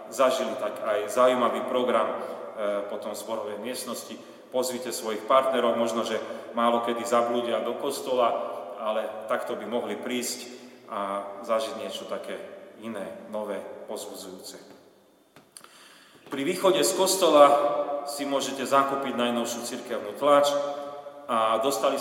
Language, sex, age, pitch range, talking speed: Slovak, male, 30-49, 120-145 Hz, 115 wpm